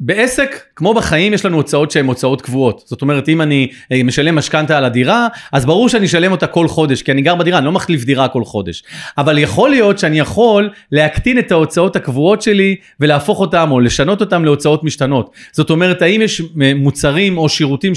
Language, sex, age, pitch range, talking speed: Hebrew, male, 30-49, 155-215 Hz, 195 wpm